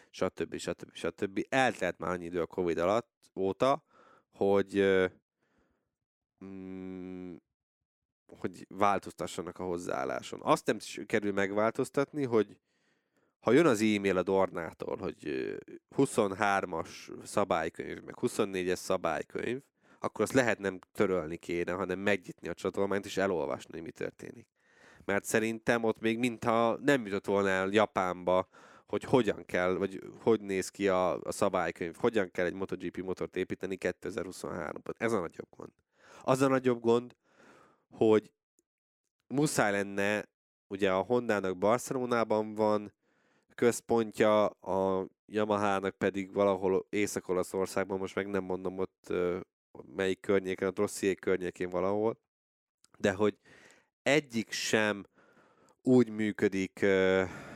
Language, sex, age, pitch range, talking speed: Hungarian, male, 20-39, 95-110 Hz, 120 wpm